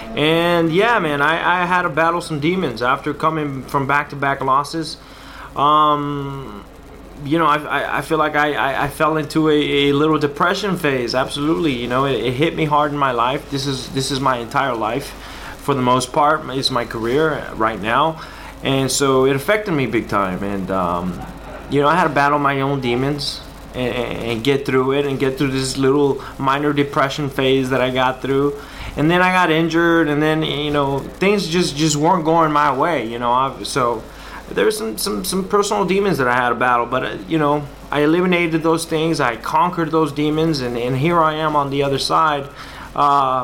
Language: German